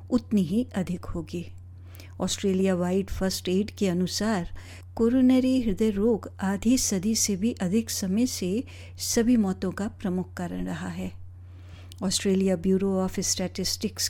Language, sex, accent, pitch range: Hindi, female, native, 175-225 Hz